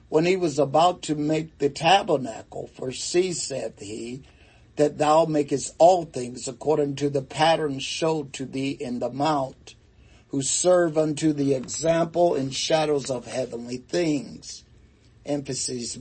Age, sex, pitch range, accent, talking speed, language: 60-79, male, 135-165 Hz, American, 140 wpm, English